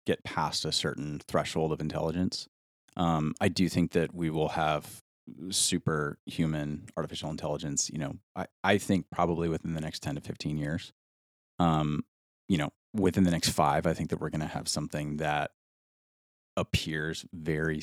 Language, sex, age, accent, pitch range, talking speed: English, male, 30-49, American, 75-90 Hz, 165 wpm